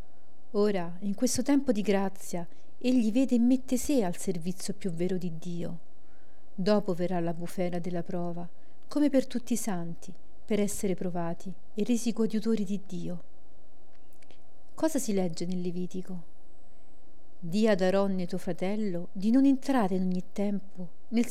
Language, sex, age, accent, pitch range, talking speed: Italian, female, 50-69, native, 180-225 Hz, 150 wpm